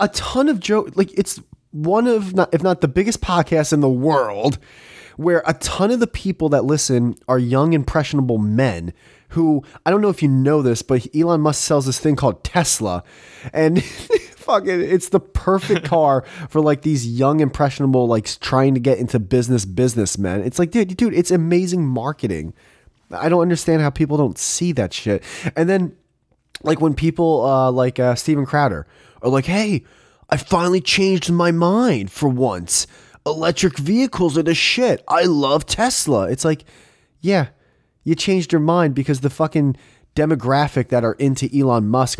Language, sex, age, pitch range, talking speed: English, male, 20-39, 125-175 Hz, 175 wpm